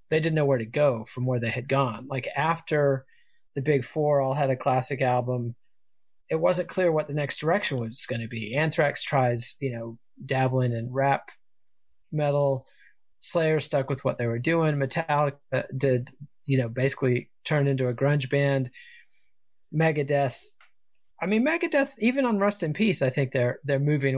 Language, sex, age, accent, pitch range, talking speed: English, male, 30-49, American, 125-155 Hz, 175 wpm